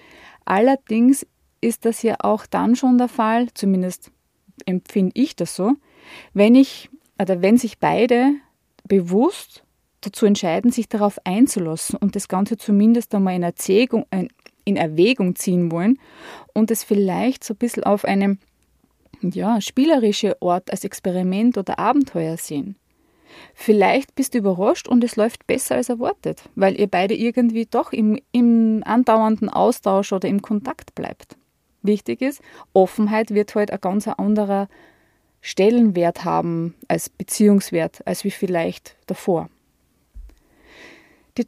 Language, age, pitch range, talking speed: German, 20-39, 195-245 Hz, 130 wpm